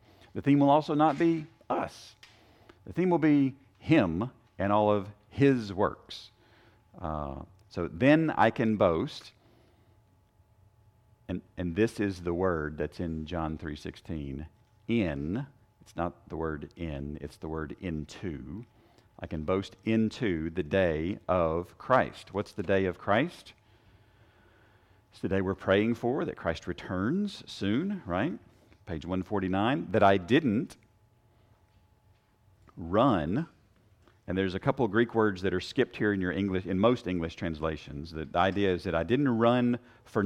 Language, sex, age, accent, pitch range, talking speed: English, male, 50-69, American, 85-110 Hz, 150 wpm